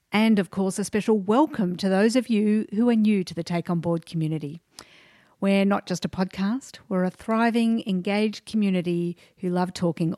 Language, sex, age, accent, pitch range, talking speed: English, female, 50-69, Australian, 170-215 Hz, 190 wpm